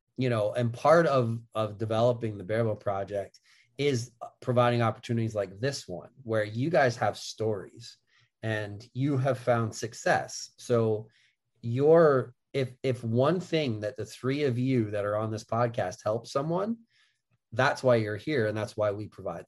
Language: English